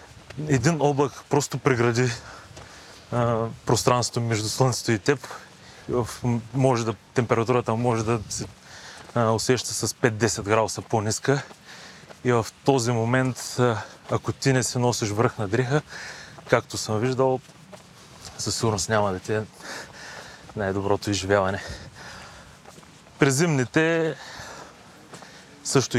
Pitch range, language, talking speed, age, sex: 115-140 Hz, Bulgarian, 110 wpm, 30-49, male